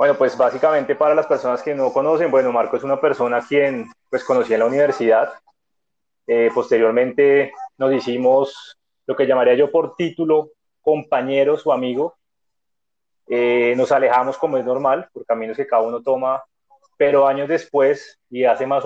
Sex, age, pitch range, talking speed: male, 20-39, 135-175 Hz, 160 wpm